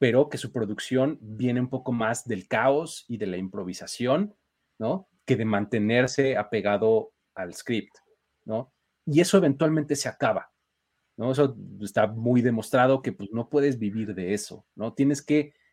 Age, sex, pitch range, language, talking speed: 30-49, male, 110-150 Hz, Spanish, 160 wpm